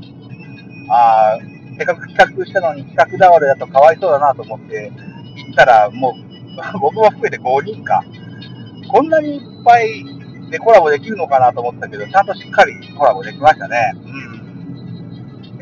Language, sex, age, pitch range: Japanese, male, 50-69, 135-205 Hz